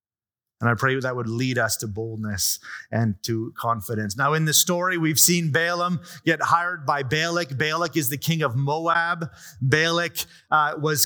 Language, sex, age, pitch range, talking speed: English, male, 30-49, 135-180 Hz, 175 wpm